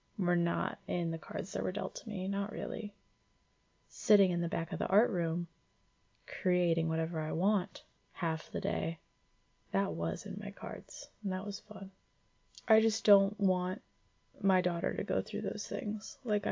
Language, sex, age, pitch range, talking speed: English, female, 20-39, 160-205 Hz, 175 wpm